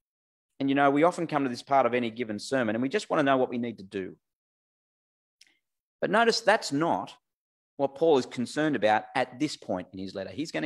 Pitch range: 110-150 Hz